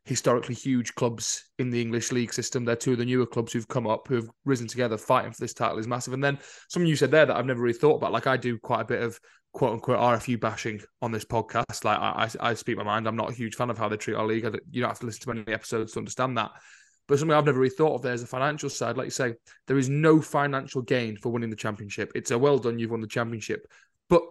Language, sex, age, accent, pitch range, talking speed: English, male, 20-39, British, 115-135 Hz, 275 wpm